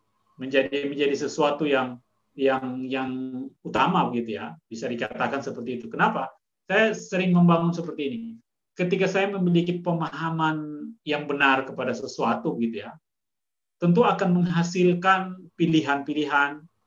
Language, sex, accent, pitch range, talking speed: Indonesian, male, native, 150-190 Hz, 115 wpm